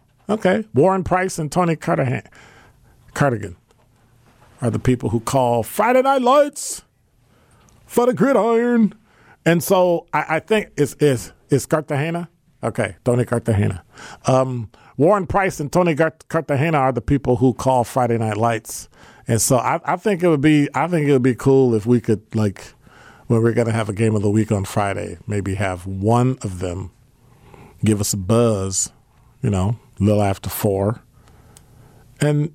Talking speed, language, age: 165 wpm, English, 40-59